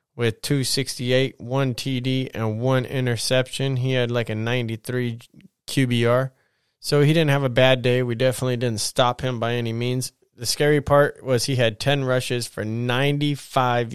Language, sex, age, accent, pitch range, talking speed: English, male, 20-39, American, 115-130 Hz, 165 wpm